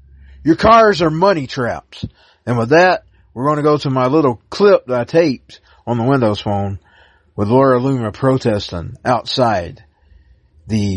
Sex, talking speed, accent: male, 160 wpm, American